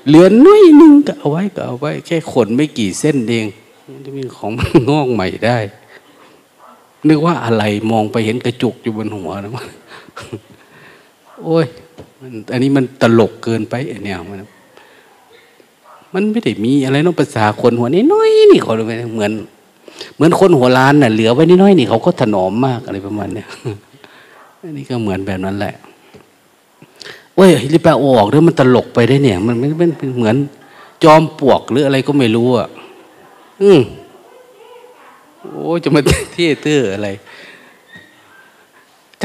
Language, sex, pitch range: Thai, male, 115-170 Hz